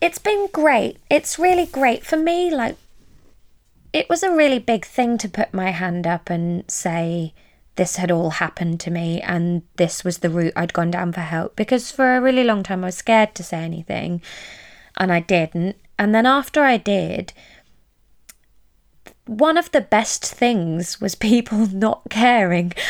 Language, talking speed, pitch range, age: English, 175 wpm, 175-235 Hz, 20-39